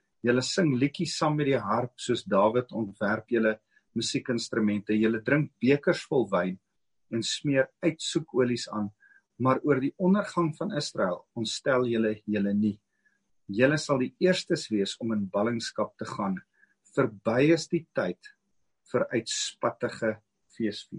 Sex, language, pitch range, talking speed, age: male, English, 110-155 Hz, 135 wpm, 40-59